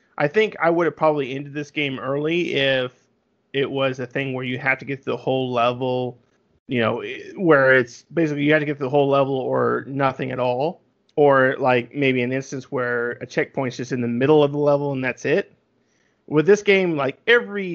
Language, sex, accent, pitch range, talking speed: English, male, American, 125-160 Hz, 215 wpm